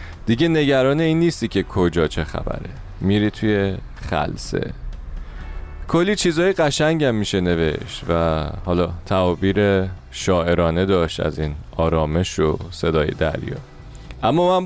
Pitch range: 90-135 Hz